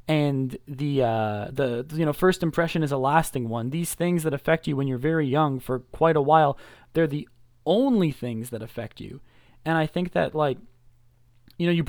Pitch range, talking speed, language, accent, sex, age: 125-160 Hz, 200 wpm, English, American, male, 20-39